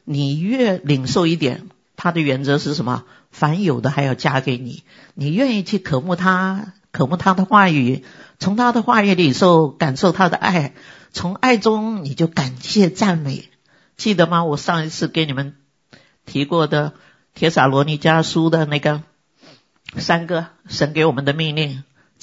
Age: 50-69